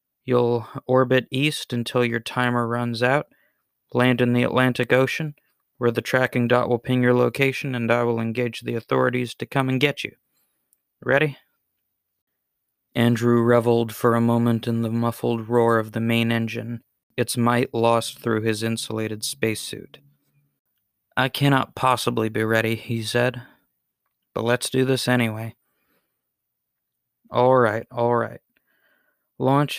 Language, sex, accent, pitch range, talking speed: English, male, American, 115-125 Hz, 140 wpm